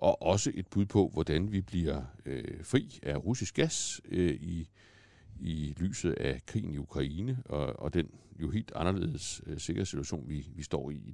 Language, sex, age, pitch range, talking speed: Danish, male, 60-79, 80-105 Hz, 190 wpm